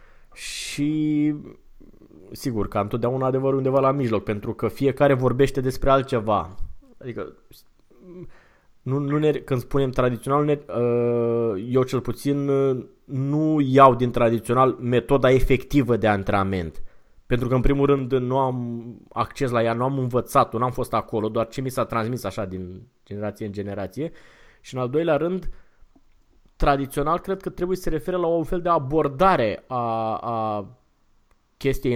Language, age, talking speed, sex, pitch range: Romanian, 20-39, 150 wpm, male, 110-140 Hz